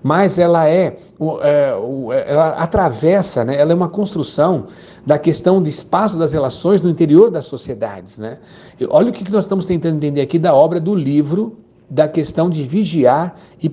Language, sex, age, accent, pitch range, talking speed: Portuguese, male, 60-79, Brazilian, 145-195 Hz, 165 wpm